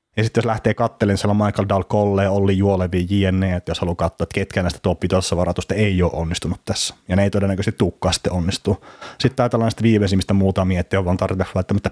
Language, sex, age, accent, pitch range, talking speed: Finnish, male, 30-49, native, 95-115 Hz, 215 wpm